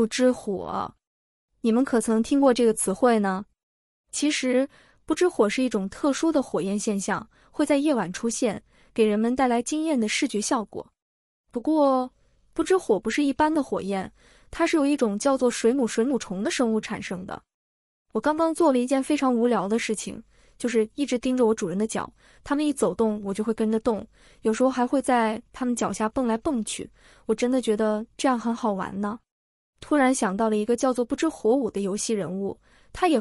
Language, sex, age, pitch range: Chinese, female, 20-39, 215-270 Hz